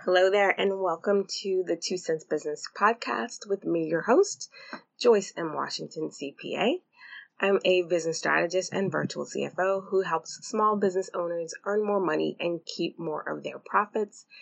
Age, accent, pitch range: 20-39, American, 160-215 Hz